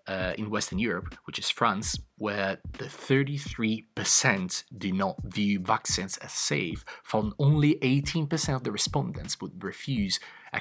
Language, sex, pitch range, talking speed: English, male, 100-130 Hz, 140 wpm